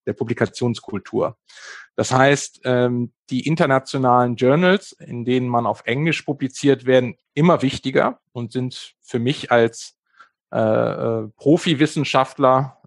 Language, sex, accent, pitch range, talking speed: German, male, German, 120-145 Hz, 105 wpm